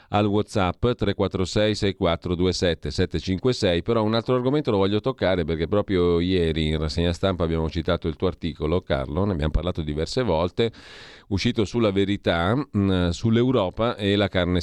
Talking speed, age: 155 wpm, 40-59